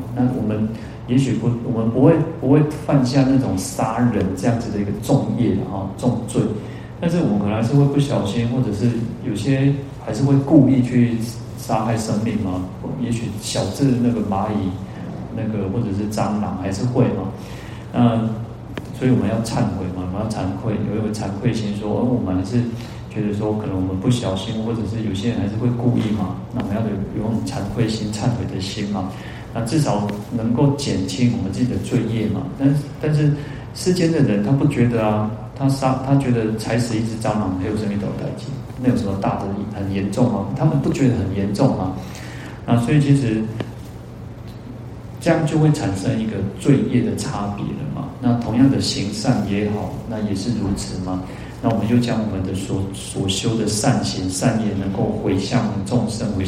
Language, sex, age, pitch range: Chinese, male, 30-49, 105-125 Hz